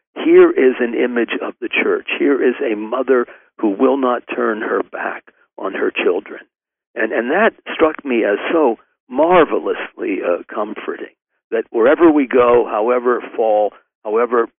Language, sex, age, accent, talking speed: English, male, 60-79, American, 150 wpm